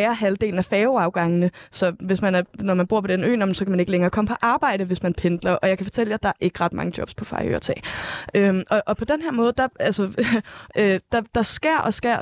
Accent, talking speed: native, 250 wpm